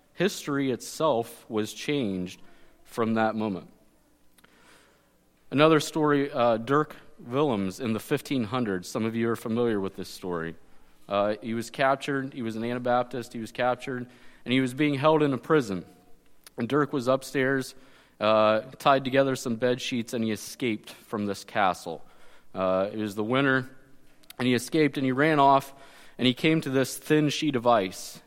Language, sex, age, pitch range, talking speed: English, male, 30-49, 105-135 Hz, 170 wpm